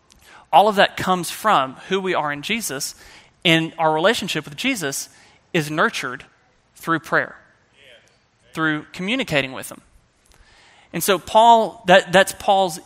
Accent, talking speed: American, 135 wpm